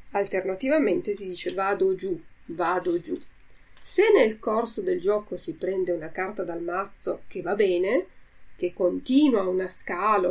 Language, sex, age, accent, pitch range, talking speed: Italian, female, 30-49, native, 185-245 Hz, 145 wpm